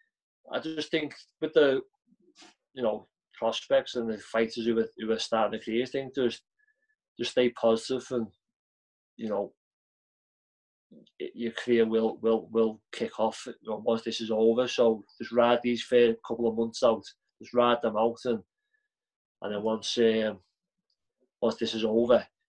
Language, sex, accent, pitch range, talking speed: English, male, British, 115-135 Hz, 165 wpm